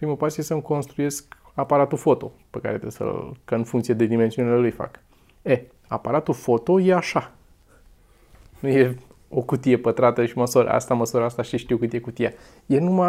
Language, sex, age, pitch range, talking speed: Romanian, male, 20-39, 120-145 Hz, 185 wpm